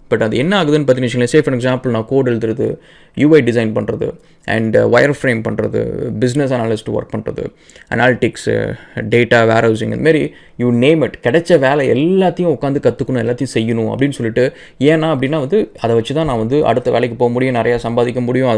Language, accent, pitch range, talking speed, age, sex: English, Indian, 120-150 Hz, 95 wpm, 20-39, male